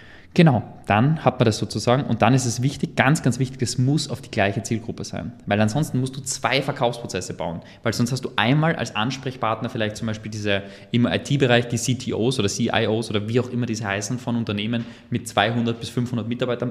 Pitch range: 115-140 Hz